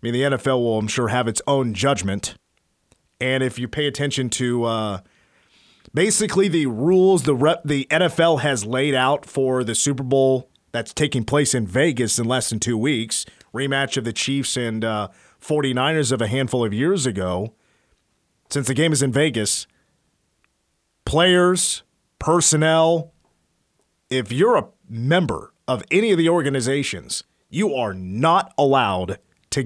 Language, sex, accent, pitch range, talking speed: English, male, American, 115-155 Hz, 160 wpm